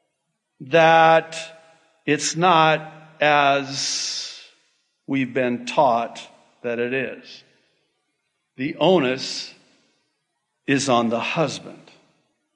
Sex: male